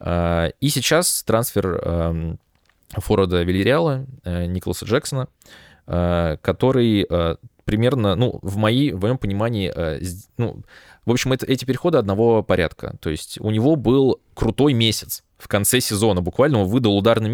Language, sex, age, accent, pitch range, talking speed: Russian, male, 20-39, native, 95-125 Hz, 120 wpm